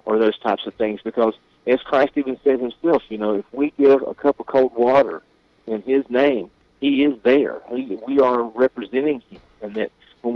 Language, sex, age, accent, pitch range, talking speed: English, male, 50-69, American, 105-130 Hz, 195 wpm